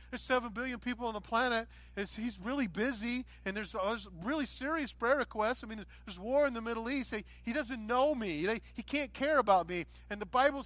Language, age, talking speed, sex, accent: English, 40-59, 205 wpm, male, American